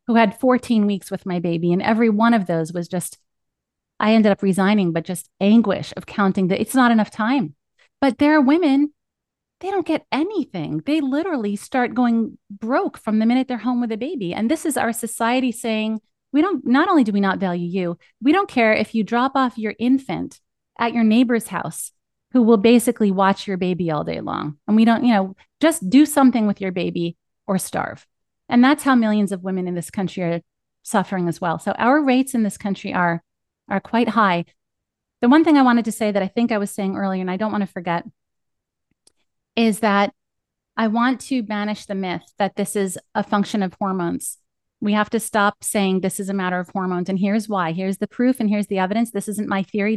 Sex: female